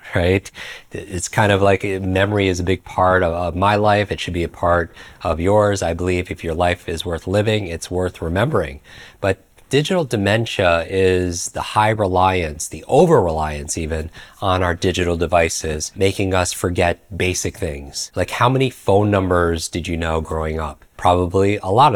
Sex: male